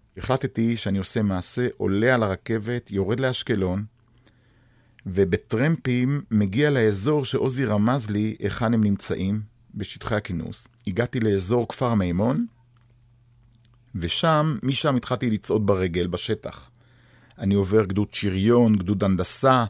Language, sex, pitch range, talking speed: Hebrew, male, 105-125 Hz, 110 wpm